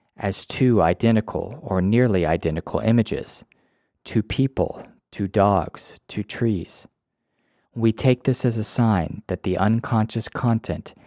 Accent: American